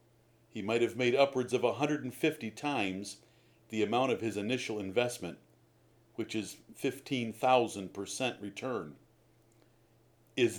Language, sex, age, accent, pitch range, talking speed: English, male, 50-69, American, 110-135 Hz, 110 wpm